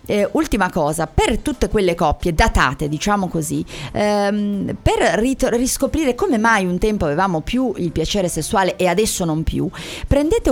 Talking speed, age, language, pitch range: 155 wpm, 30-49, Italian, 180-230 Hz